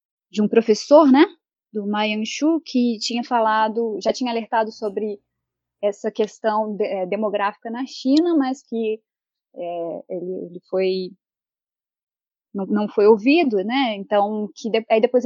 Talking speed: 140 wpm